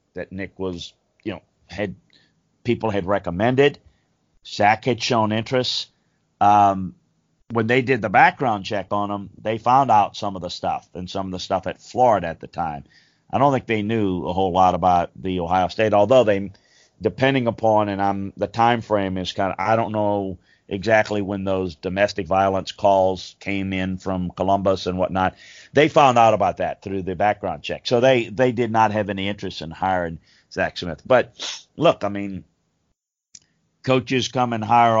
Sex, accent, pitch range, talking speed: male, American, 95-115 Hz, 185 wpm